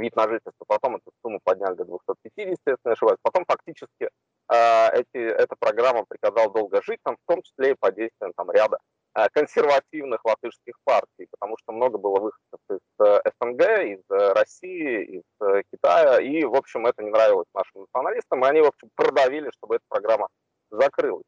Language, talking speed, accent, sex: Russian, 180 wpm, native, male